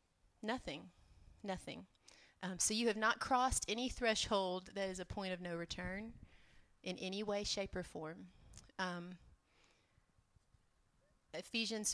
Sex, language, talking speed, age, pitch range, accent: female, English, 125 wpm, 30-49, 185-220 Hz, American